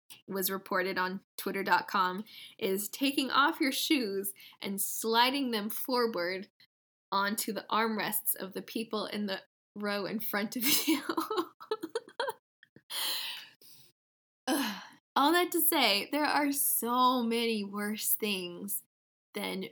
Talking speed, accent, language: 120 wpm, American, English